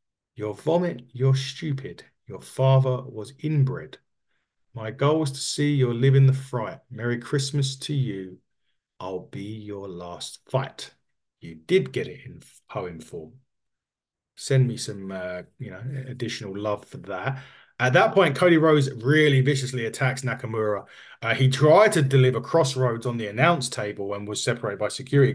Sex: male